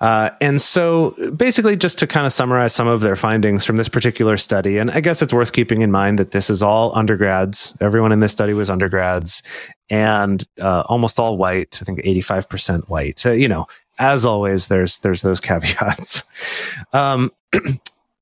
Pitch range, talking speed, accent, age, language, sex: 100-130 Hz, 180 wpm, American, 30-49, English, male